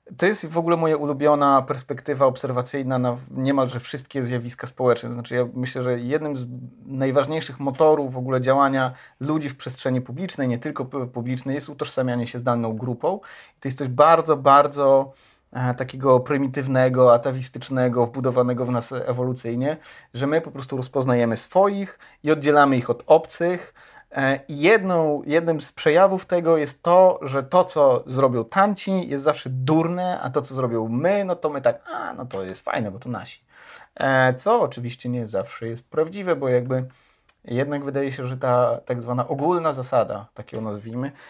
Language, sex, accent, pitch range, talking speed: Polish, male, native, 125-150 Hz, 165 wpm